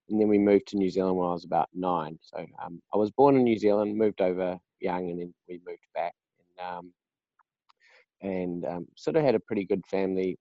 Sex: male